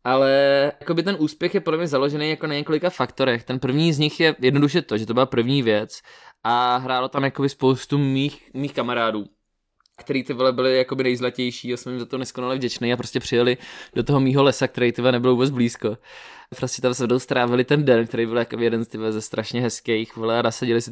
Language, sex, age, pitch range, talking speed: Czech, male, 20-39, 125-145 Hz, 205 wpm